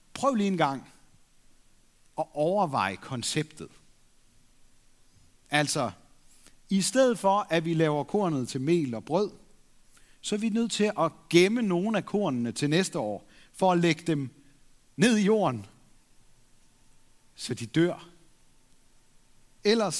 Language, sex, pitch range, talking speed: Danish, male, 135-195 Hz, 130 wpm